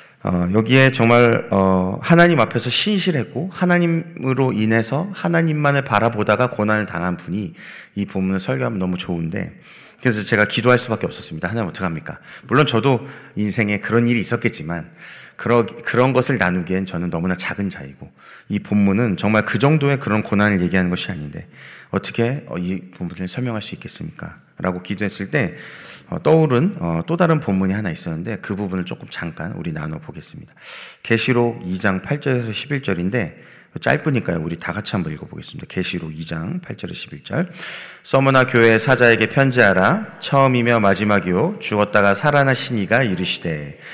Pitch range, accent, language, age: 95-130 Hz, native, Korean, 30-49